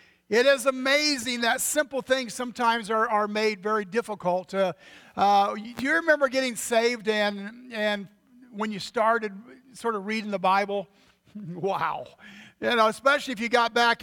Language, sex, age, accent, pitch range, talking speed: English, male, 50-69, American, 205-235 Hz, 165 wpm